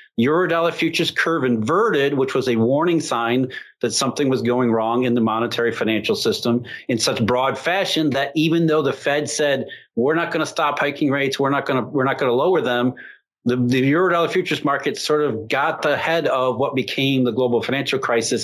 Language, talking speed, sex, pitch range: English, 205 wpm, male, 125-175 Hz